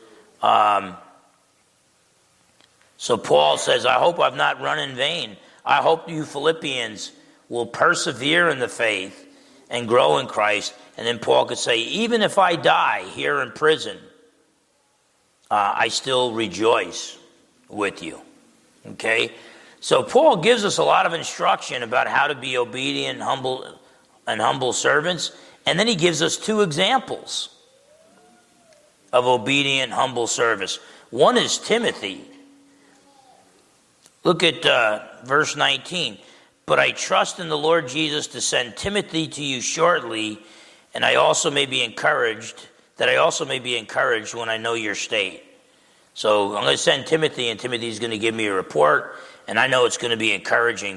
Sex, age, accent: male, 40-59, American